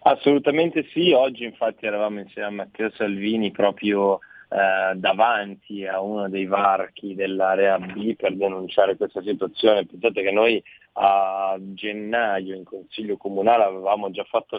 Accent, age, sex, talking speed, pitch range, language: native, 30-49, male, 135 wpm, 95-110 Hz, Italian